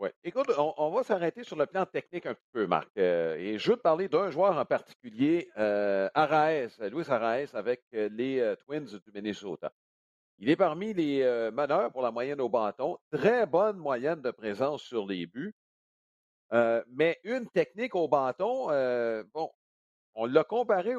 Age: 50-69